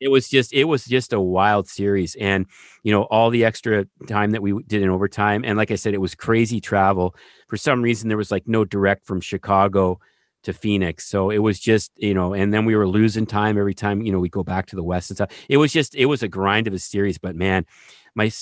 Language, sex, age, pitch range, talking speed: English, male, 40-59, 95-115 Hz, 255 wpm